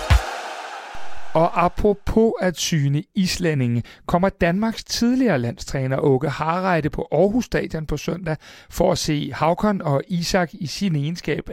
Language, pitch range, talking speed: Danish, 140-190 Hz, 130 wpm